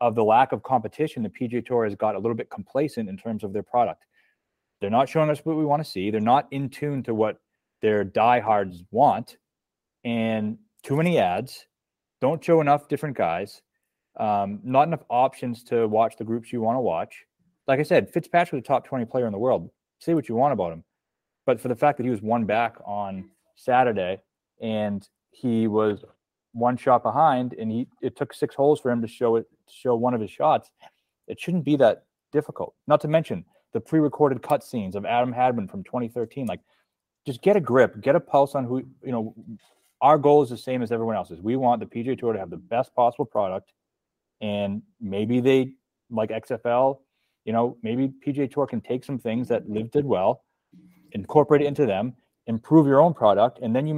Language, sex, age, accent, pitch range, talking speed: English, male, 30-49, American, 115-145 Hz, 205 wpm